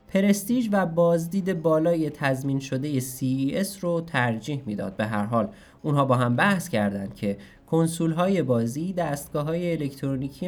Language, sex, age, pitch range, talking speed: Persian, male, 20-39, 120-170 Hz, 150 wpm